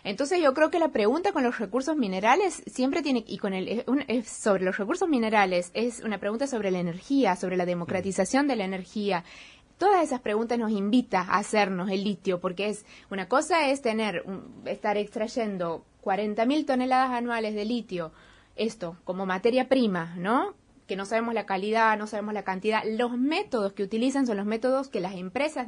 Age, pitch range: 20-39, 200-250 Hz